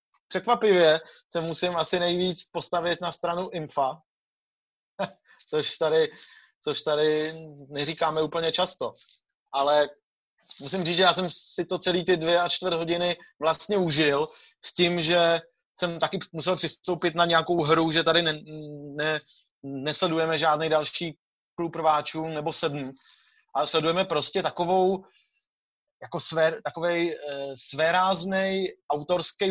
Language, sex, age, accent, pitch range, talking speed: Czech, male, 30-49, native, 155-175 Hz, 125 wpm